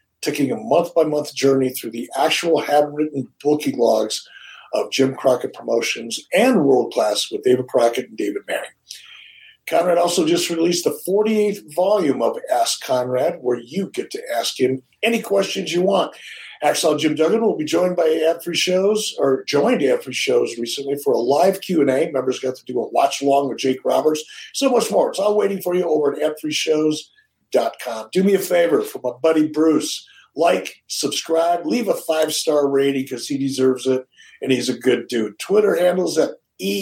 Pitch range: 140-185 Hz